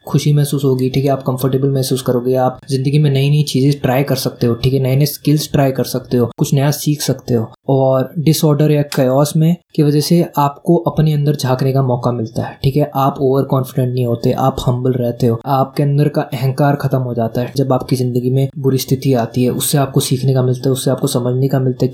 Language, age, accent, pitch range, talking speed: Hindi, 20-39, native, 125-145 Hz, 240 wpm